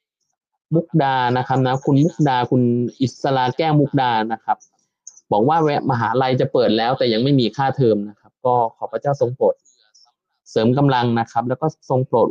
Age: 20-39